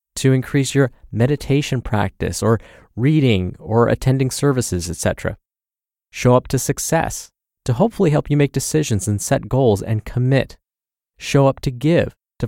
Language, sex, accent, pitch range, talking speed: English, male, American, 105-140 Hz, 150 wpm